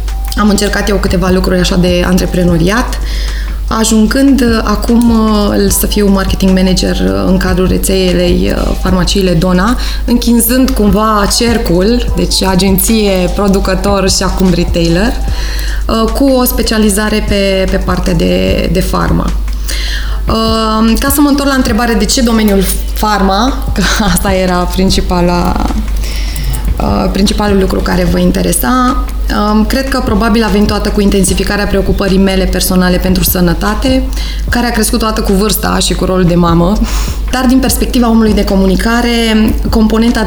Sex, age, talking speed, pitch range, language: female, 20-39, 130 wpm, 180-220 Hz, Romanian